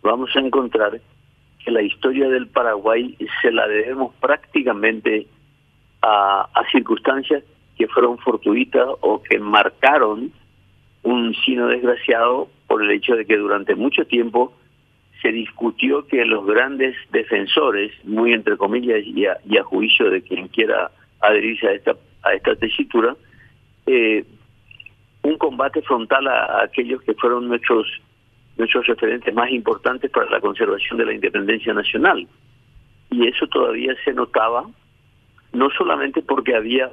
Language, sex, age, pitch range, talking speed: Spanish, male, 50-69, 115-150 Hz, 135 wpm